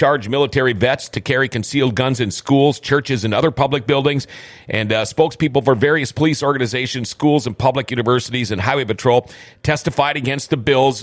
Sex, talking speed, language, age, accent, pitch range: male, 175 wpm, English, 40-59, American, 125-160 Hz